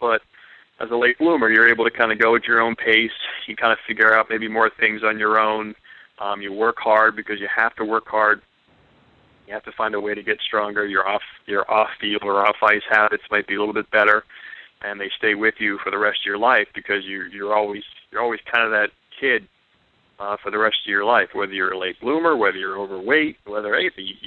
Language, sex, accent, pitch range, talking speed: English, male, American, 105-115 Hz, 235 wpm